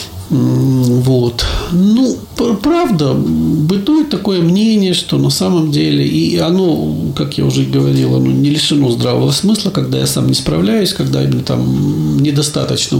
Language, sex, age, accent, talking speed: Russian, male, 50-69, native, 140 wpm